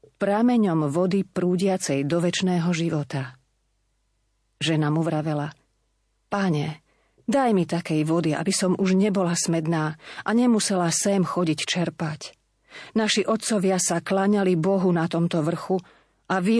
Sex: female